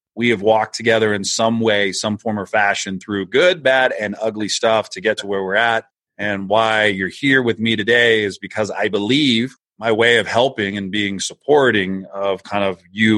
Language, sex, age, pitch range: English, male, 30-49, 95-115 Hz